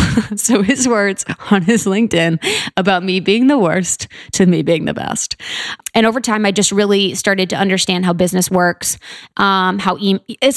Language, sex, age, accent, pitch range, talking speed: English, female, 20-39, American, 175-205 Hz, 180 wpm